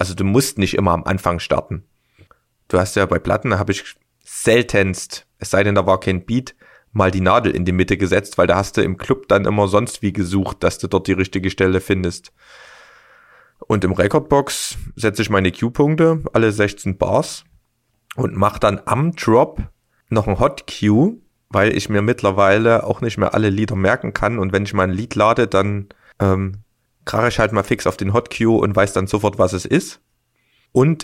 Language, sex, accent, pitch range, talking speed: German, male, German, 95-115 Hz, 200 wpm